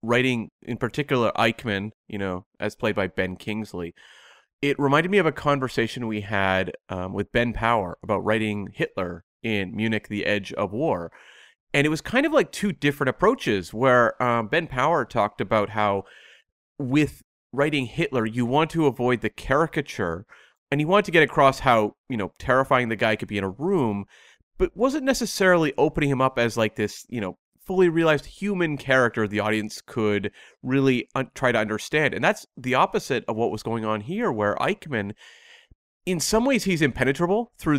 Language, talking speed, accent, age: English, 180 wpm, American, 30-49